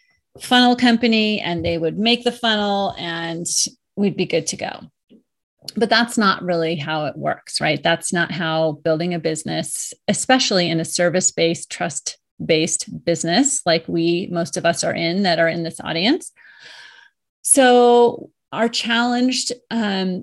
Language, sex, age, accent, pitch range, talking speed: English, female, 30-49, American, 175-230 Hz, 150 wpm